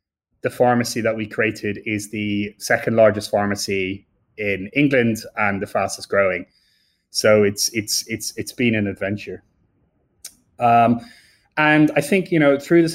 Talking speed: 150 wpm